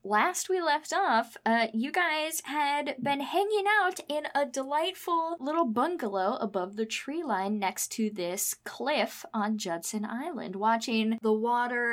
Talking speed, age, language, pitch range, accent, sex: 150 wpm, 10-29, English, 190-235 Hz, American, female